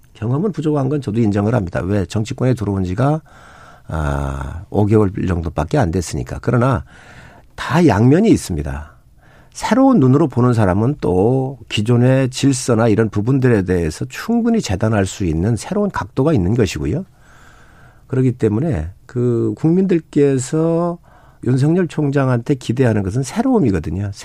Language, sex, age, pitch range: Korean, male, 50-69, 95-140 Hz